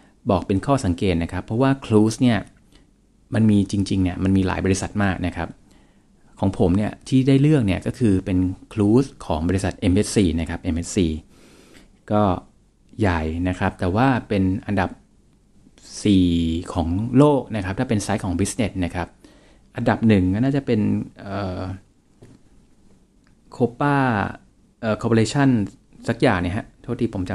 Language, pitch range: Thai, 95-115 Hz